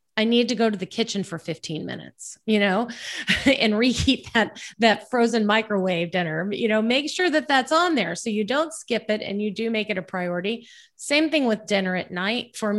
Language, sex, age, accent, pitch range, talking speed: English, female, 30-49, American, 195-240 Hz, 215 wpm